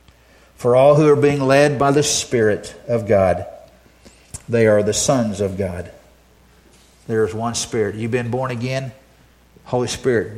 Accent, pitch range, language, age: American, 75-125 Hz, English, 50-69